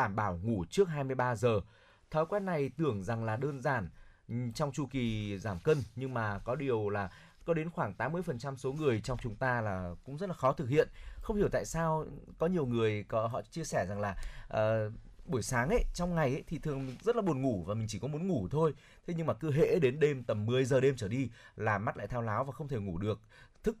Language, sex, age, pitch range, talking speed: Vietnamese, male, 20-39, 110-145 Hz, 245 wpm